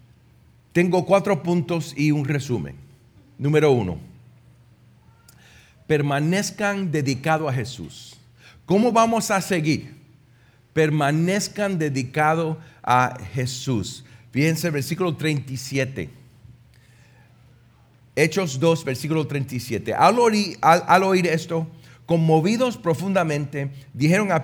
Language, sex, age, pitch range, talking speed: Spanish, male, 40-59, 125-170 Hz, 90 wpm